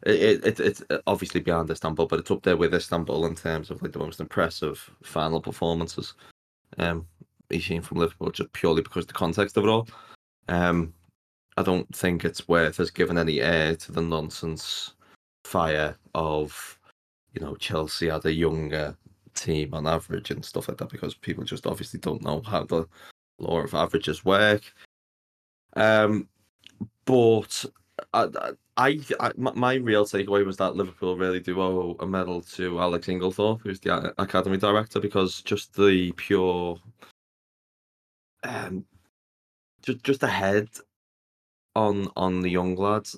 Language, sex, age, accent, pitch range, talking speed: English, male, 20-39, British, 80-105 Hz, 155 wpm